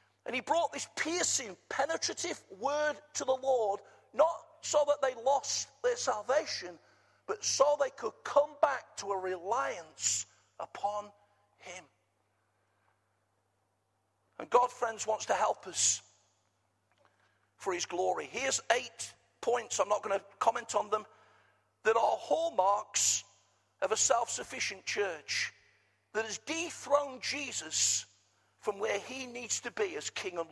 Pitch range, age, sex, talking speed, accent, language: 190-275 Hz, 50-69, male, 135 wpm, British, English